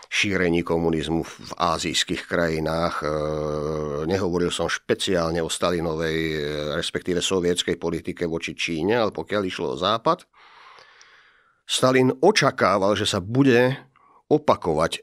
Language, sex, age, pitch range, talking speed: Slovak, male, 50-69, 90-130 Hz, 105 wpm